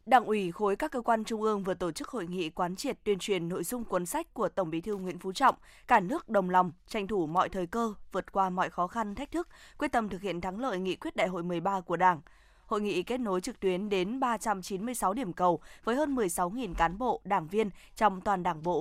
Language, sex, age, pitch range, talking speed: Vietnamese, female, 20-39, 185-230 Hz, 250 wpm